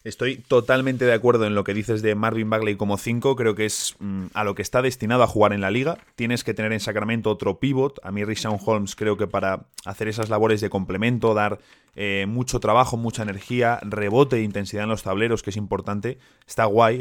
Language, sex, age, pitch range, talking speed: Spanish, male, 20-39, 100-125 Hz, 220 wpm